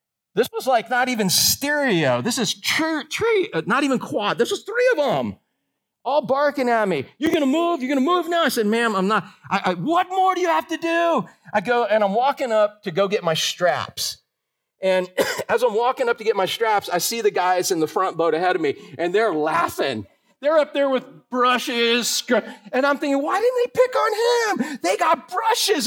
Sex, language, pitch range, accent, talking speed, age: male, English, 215-325 Hz, American, 210 wpm, 40-59